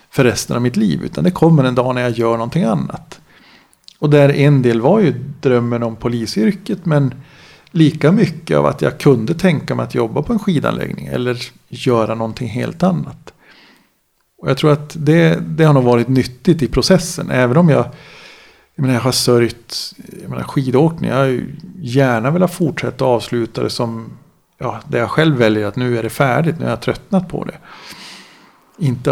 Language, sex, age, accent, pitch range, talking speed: Swedish, male, 50-69, native, 120-155 Hz, 190 wpm